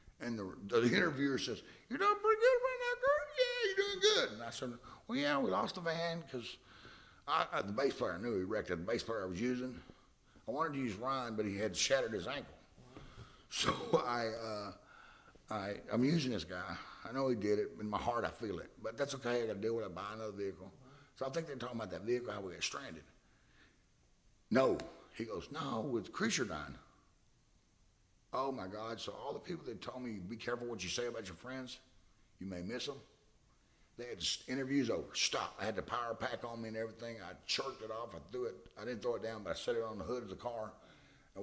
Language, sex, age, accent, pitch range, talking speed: English, male, 60-79, American, 105-135 Hz, 240 wpm